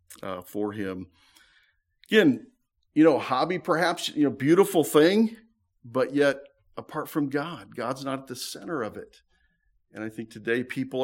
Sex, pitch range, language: male, 110-160 Hz, English